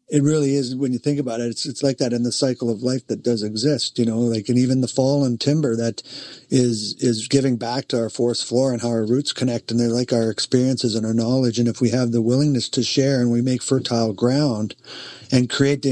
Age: 50-69